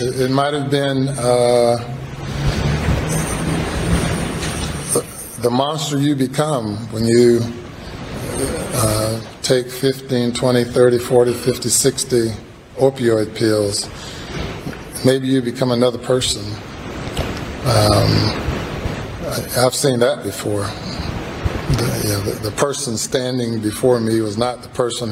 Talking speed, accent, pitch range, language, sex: 105 wpm, American, 110-125 Hz, English, male